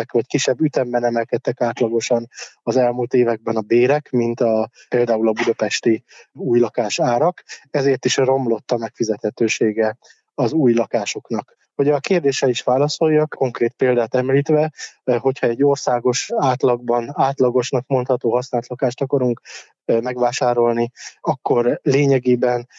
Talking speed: 120 wpm